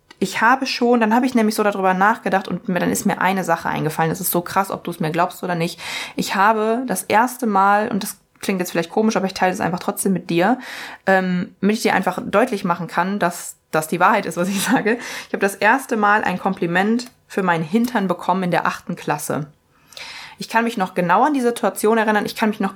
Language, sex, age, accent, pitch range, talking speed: German, female, 20-39, German, 175-220 Hz, 245 wpm